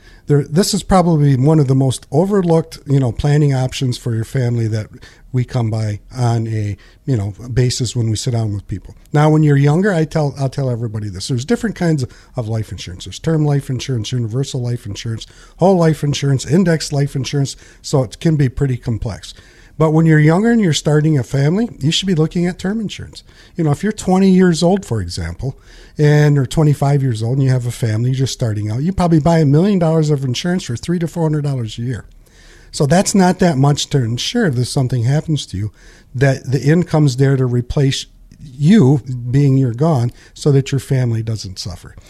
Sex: male